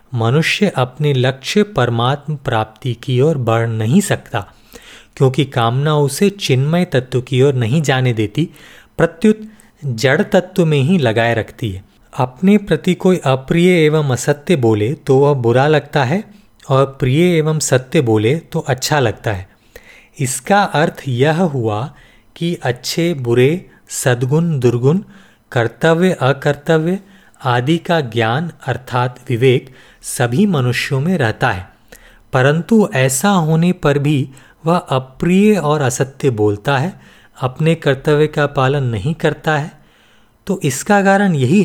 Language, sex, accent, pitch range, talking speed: Hindi, male, native, 125-170 Hz, 135 wpm